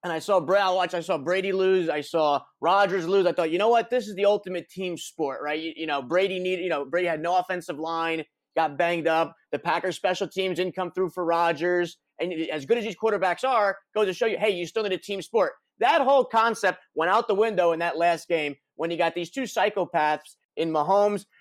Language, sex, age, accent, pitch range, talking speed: English, male, 30-49, American, 165-195 Hz, 240 wpm